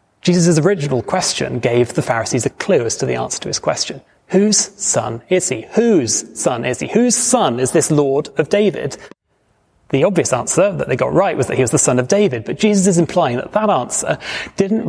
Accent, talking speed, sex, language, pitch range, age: British, 215 wpm, male, English, 125-190 Hz, 30-49